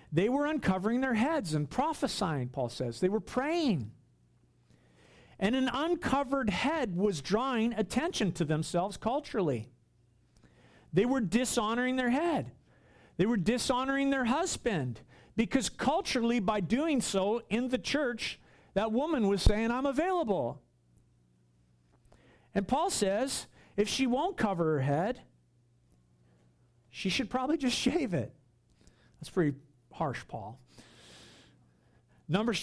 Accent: American